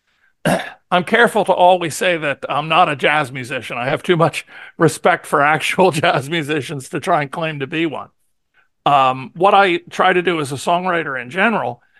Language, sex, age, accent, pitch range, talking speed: English, male, 50-69, American, 140-175 Hz, 190 wpm